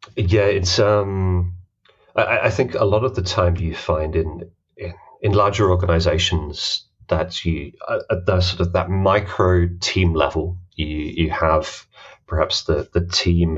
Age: 30-49